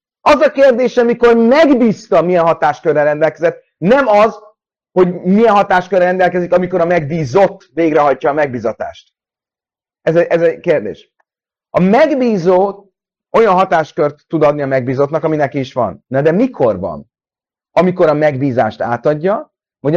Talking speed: 130 wpm